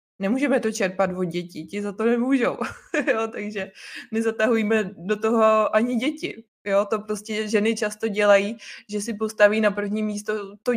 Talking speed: 160 wpm